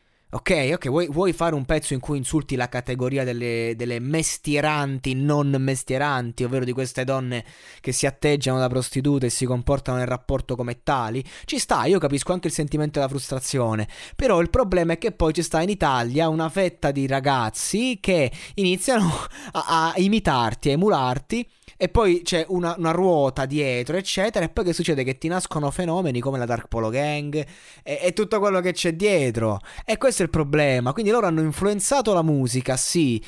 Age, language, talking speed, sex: 20-39, Italian, 185 wpm, male